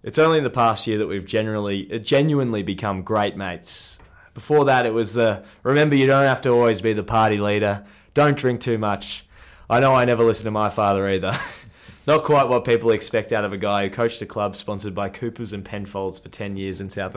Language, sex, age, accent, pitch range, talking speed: English, male, 20-39, Australian, 95-115 Hz, 225 wpm